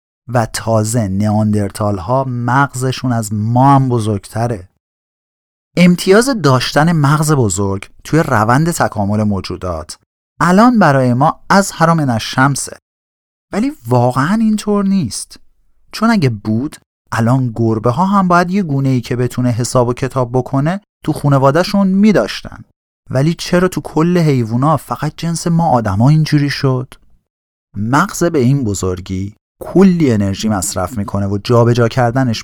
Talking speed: 130 wpm